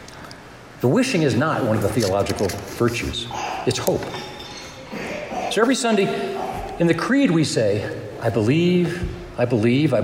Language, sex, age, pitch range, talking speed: English, male, 60-79, 120-190 Hz, 145 wpm